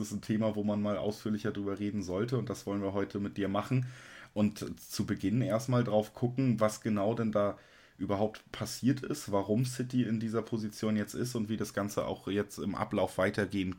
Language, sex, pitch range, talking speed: German, male, 100-115 Hz, 205 wpm